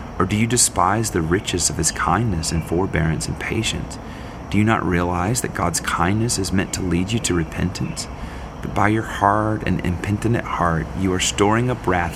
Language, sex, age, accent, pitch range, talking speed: English, male, 30-49, American, 80-100 Hz, 190 wpm